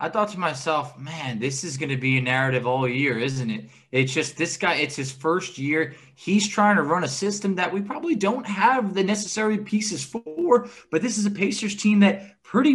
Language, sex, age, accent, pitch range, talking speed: English, male, 20-39, American, 135-195 Hz, 220 wpm